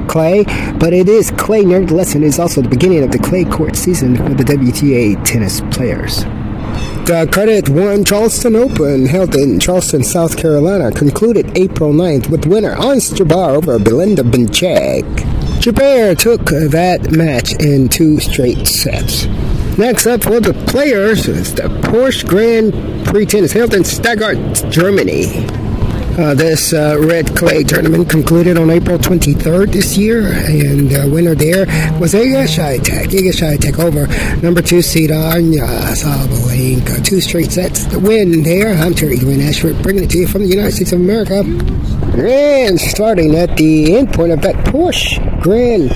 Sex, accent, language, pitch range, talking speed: male, American, English, 130-185 Hz, 160 wpm